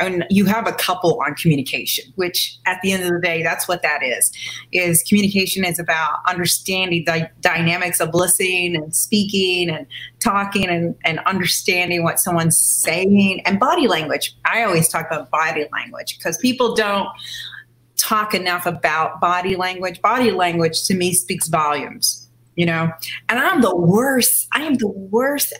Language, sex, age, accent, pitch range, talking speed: English, female, 30-49, American, 170-225 Hz, 165 wpm